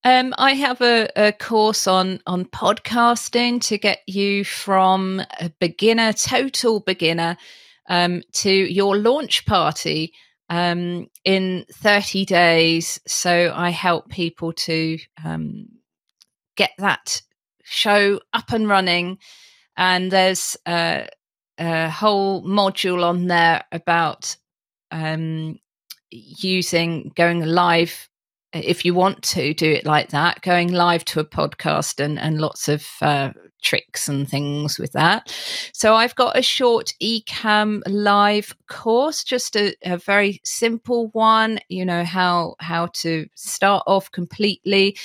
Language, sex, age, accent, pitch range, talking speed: English, female, 30-49, British, 165-205 Hz, 130 wpm